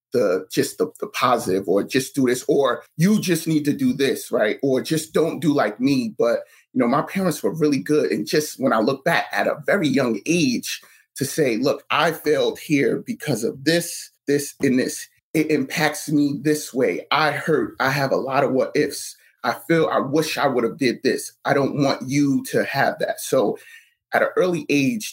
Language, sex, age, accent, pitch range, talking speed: English, male, 30-49, American, 135-185 Hz, 215 wpm